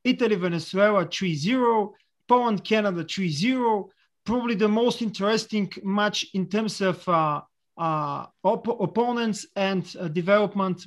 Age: 30-49